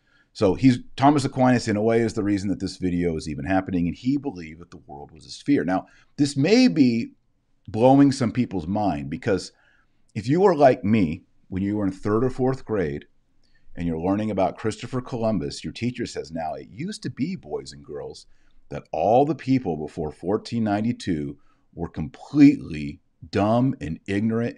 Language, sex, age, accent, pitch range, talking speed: English, male, 40-59, American, 90-125 Hz, 185 wpm